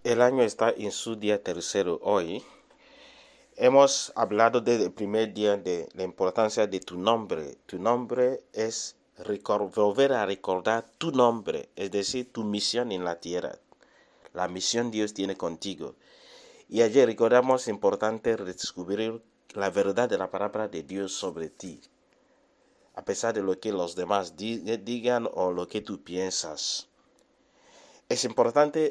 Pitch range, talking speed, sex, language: 95-125 Hz, 145 wpm, male, English